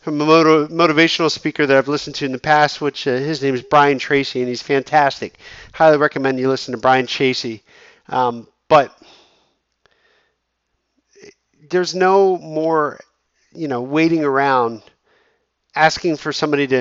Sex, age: male, 50-69